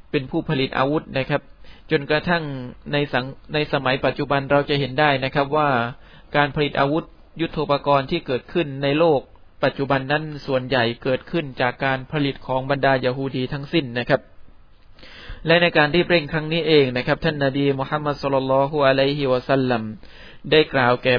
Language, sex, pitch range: Thai, male, 130-150 Hz